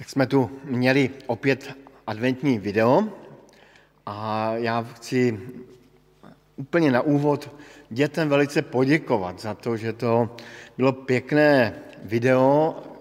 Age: 50-69